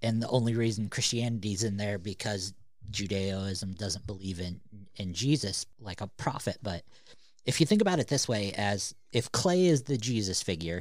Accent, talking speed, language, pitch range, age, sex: American, 180 wpm, English, 100-125 Hz, 40-59, male